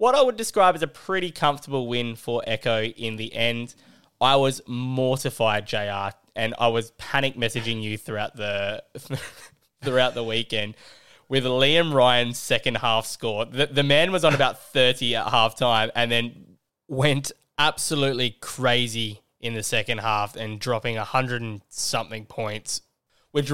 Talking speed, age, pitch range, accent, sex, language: 155 wpm, 10-29, 110-145 Hz, Australian, male, English